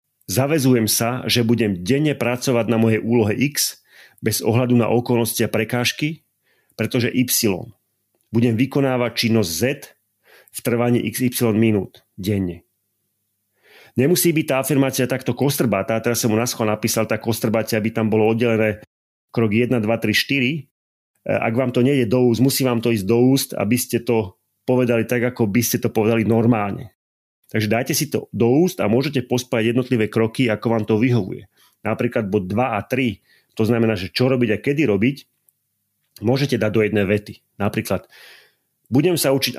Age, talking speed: 30-49, 165 wpm